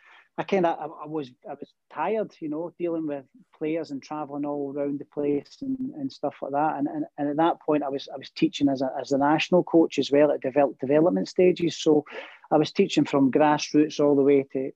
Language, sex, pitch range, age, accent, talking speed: English, male, 140-170 Hz, 30-49, British, 230 wpm